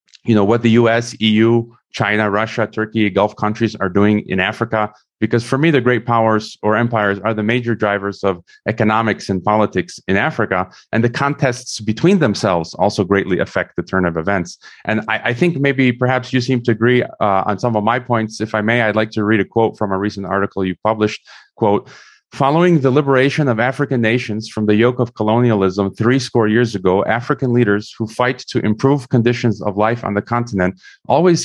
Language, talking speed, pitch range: English, 200 wpm, 105-125 Hz